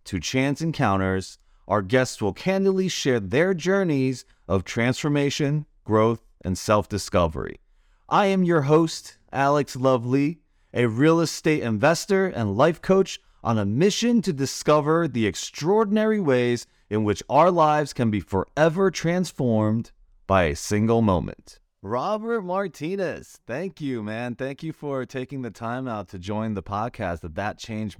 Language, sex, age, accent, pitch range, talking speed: English, male, 30-49, American, 100-140 Hz, 145 wpm